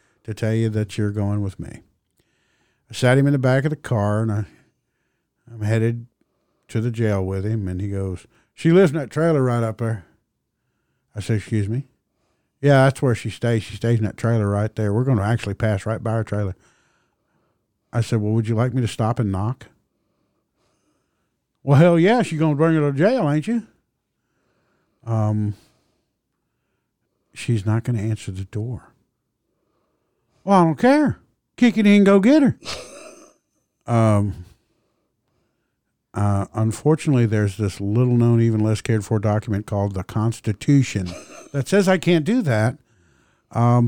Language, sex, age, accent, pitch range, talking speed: English, male, 50-69, American, 105-140 Hz, 165 wpm